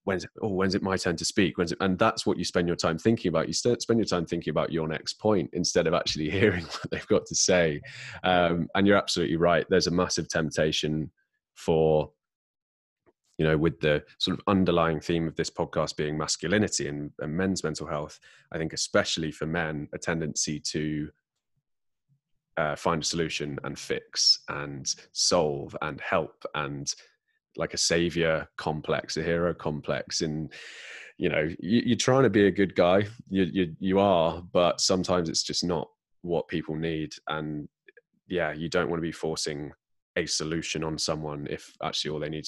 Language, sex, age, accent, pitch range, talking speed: English, male, 20-39, British, 75-95 Hz, 180 wpm